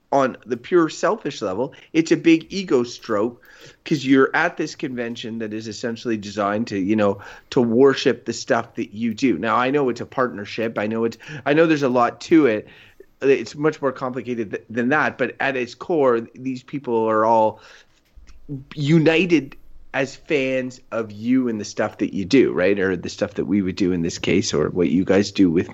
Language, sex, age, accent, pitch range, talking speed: English, male, 30-49, American, 115-170 Hz, 205 wpm